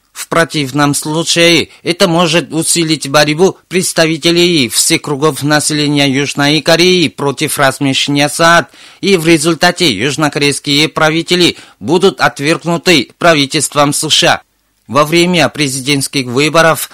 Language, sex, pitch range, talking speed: Russian, male, 145-170 Hz, 105 wpm